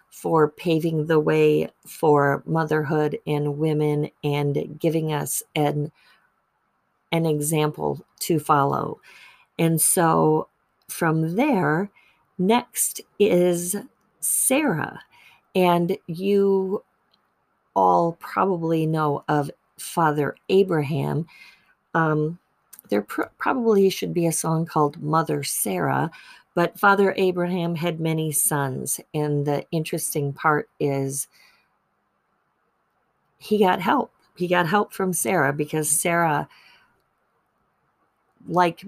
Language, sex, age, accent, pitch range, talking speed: English, female, 40-59, American, 150-180 Hz, 95 wpm